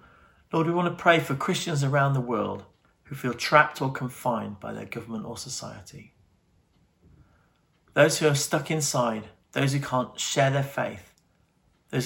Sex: male